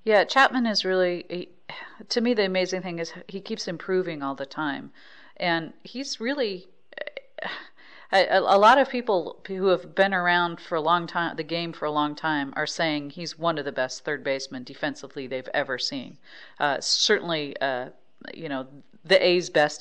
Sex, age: female, 40-59